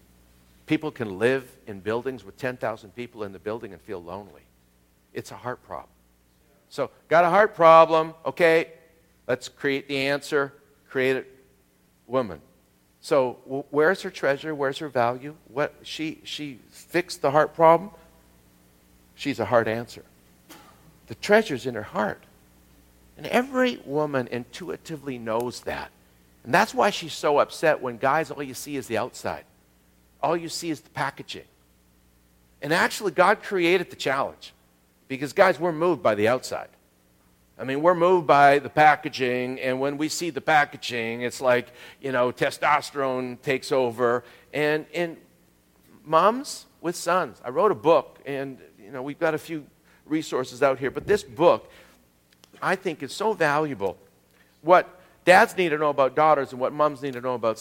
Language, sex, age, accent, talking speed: English, male, 60-79, American, 160 wpm